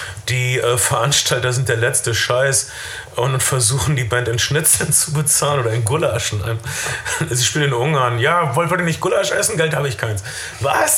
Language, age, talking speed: German, 30-49, 185 wpm